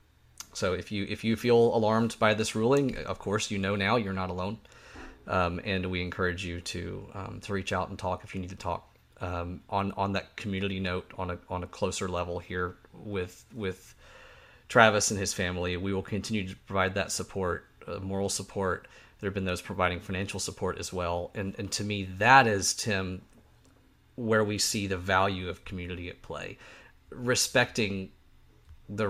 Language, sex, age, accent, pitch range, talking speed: English, male, 30-49, American, 90-110 Hz, 190 wpm